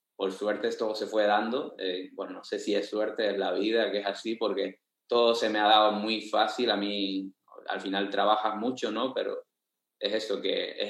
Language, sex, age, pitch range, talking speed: Spanish, male, 20-39, 100-115 Hz, 215 wpm